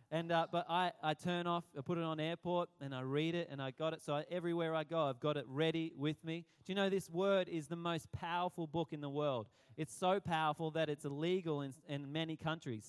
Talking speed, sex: 250 wpm, male